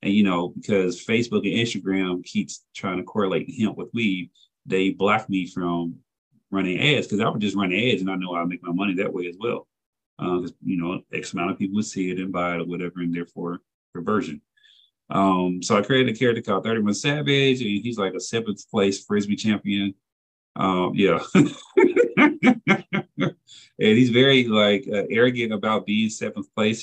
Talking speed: 190 wpm